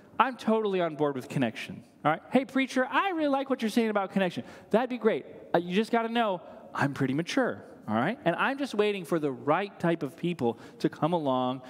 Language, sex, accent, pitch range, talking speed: English, male, American, 195-250 Hz, 225 wpm